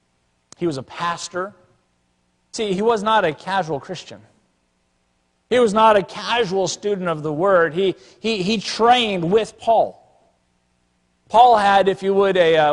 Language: English